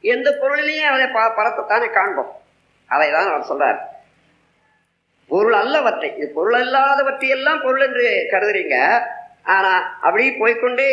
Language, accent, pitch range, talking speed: Tamil, native, 245-320 Hz, 110 wpm